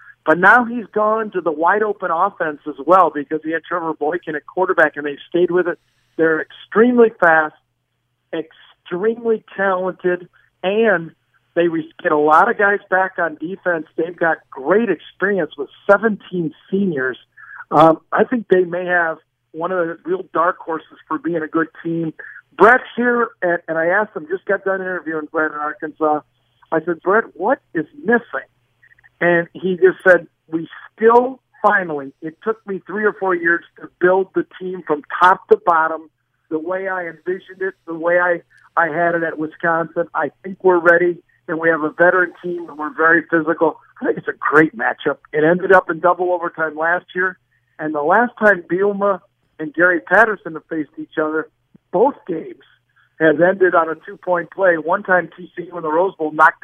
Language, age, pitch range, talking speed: English, 50-69, 160-190 Hz, 180 wpm